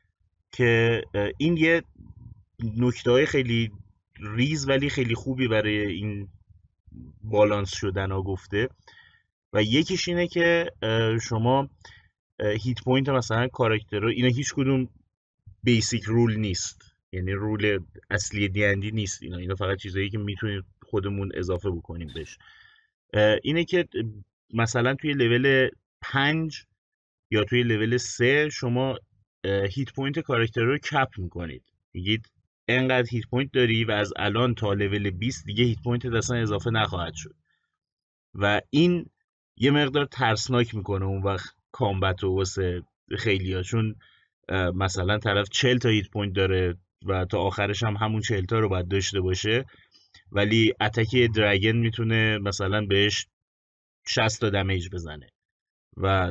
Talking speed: 130 wpm